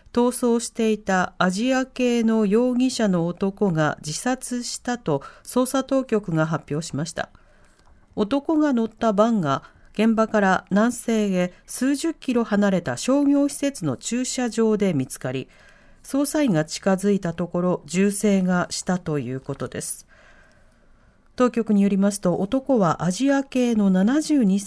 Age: 40-59